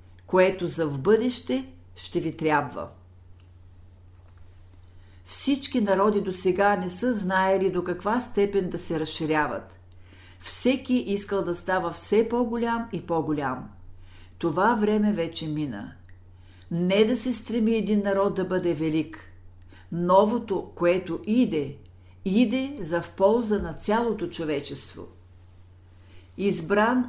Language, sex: Bulgarian, female